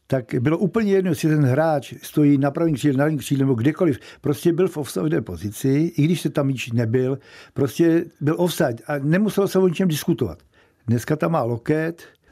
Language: Czech